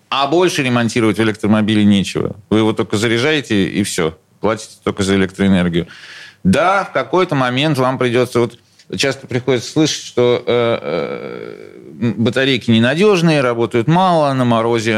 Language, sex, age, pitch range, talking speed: Russian, male, 40-59, 100-130 Hz, 130 wpm